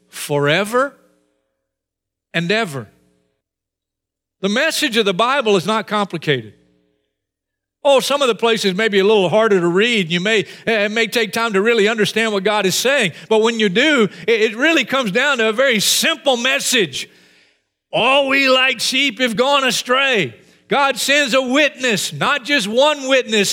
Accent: American